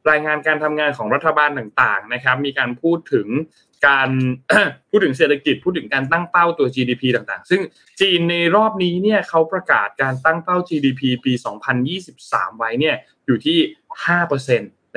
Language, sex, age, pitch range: Thai, male, 20-39, 130-175 Hz